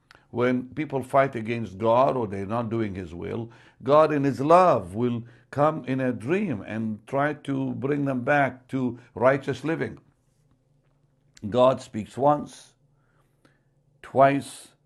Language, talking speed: English, 135 wpm